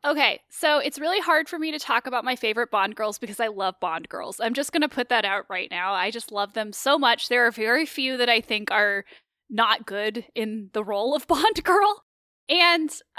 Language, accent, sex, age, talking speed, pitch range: English, American, female, 10-29, 230 wpm, 225-280 Hz